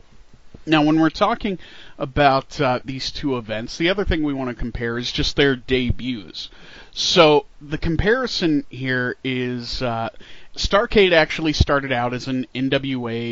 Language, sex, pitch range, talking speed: English, male, 115-155 Hz, 150 wpm